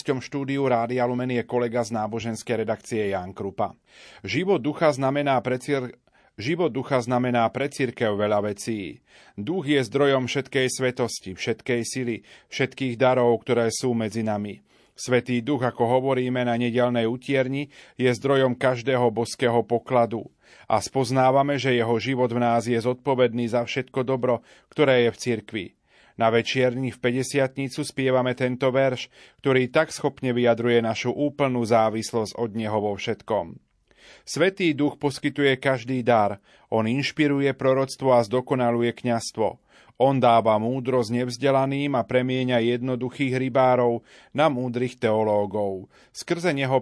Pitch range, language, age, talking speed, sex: 115-135 Hz, Slovak, 30-49, 125 wpm, male